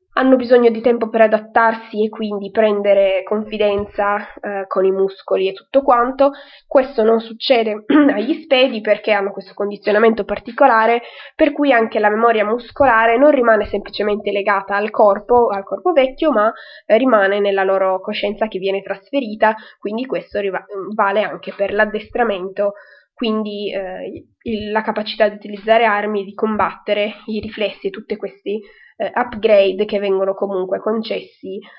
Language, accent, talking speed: Italian, native, 145 wpm